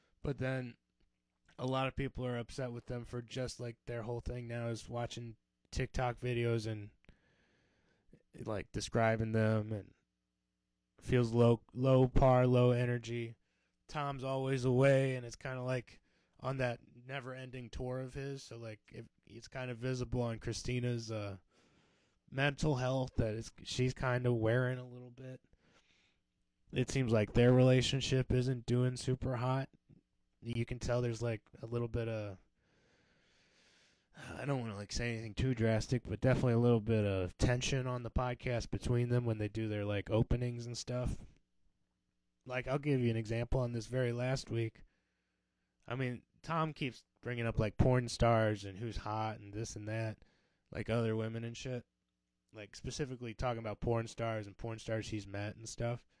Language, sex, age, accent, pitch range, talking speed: English, male, 20-39, American, 110-130 Hz, 170 wpm